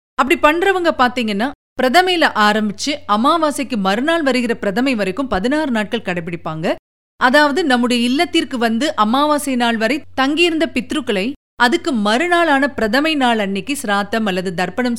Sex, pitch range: female, 195-285 Hz